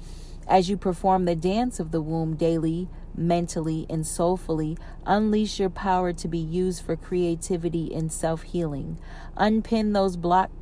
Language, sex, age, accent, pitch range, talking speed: English, female, 40-59, American, 165-190 Hz, 140 wpm